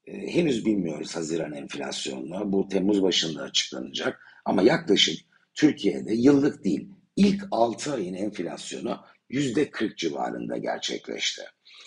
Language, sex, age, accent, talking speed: Turkish, male, 60-79, native, 100 wpm